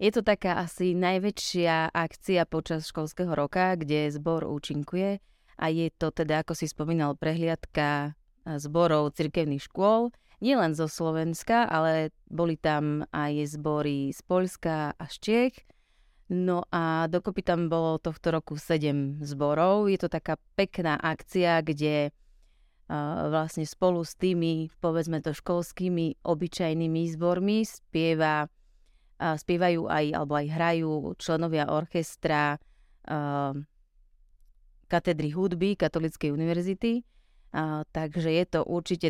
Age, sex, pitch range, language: 30-49, female, 150-175 Hz, Slovak